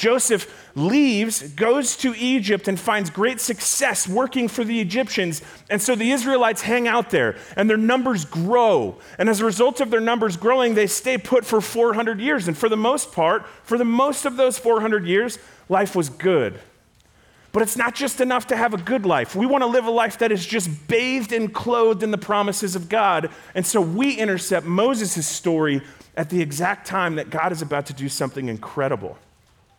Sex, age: male, 30-49